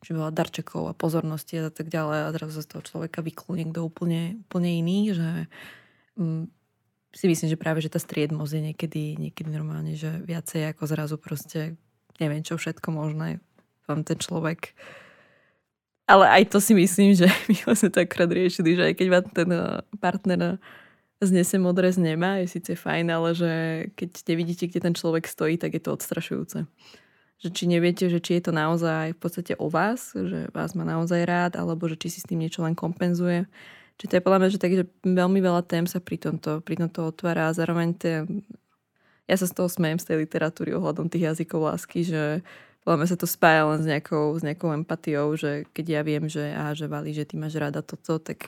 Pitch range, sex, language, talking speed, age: 155-175 Hz, female, Slovak, 200 wpm, 20-39